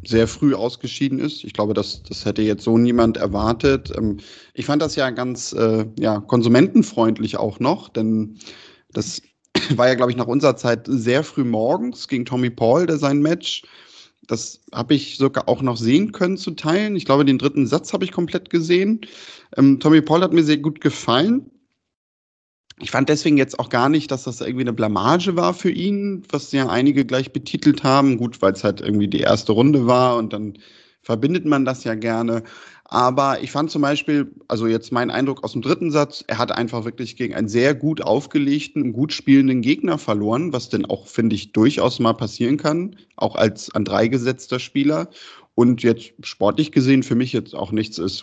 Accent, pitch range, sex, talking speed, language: German, 115-150 Hz, male, 195 wpm, German